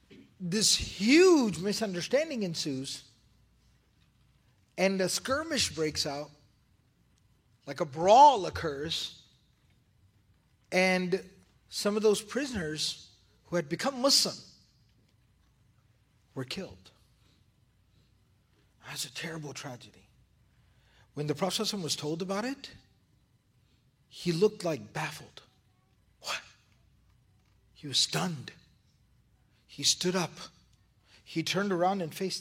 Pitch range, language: 115-185 Hz, English